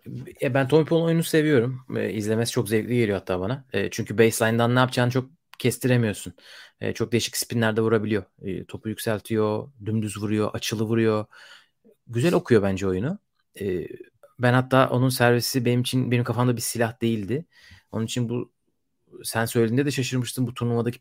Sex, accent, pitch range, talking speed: male, native, 110-140 Hz, 165 wpm